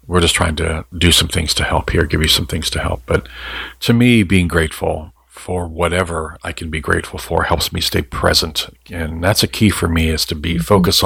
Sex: male